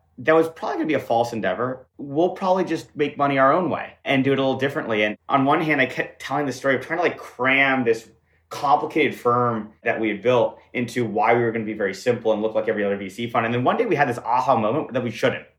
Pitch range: 115-155 Hz